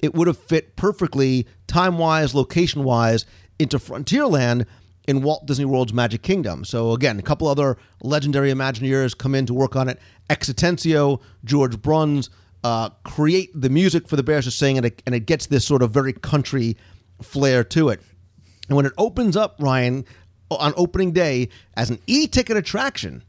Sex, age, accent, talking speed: male, 40-59, American, 165 wpm